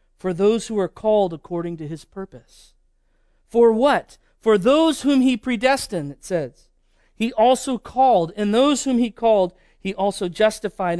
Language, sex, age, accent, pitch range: Japanese, male, 40-59, American, 155-215 Hz